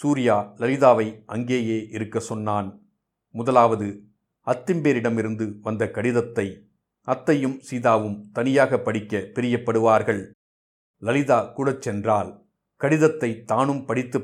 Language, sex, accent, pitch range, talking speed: Tamil, male, native, 110-125 Hz, 85 wpm